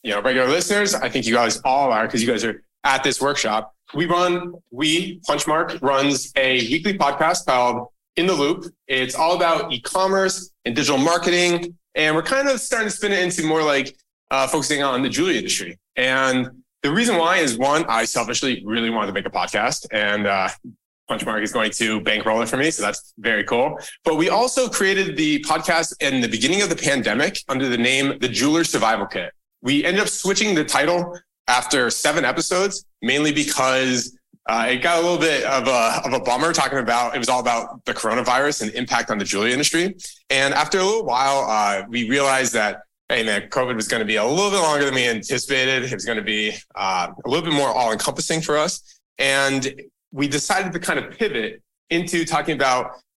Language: English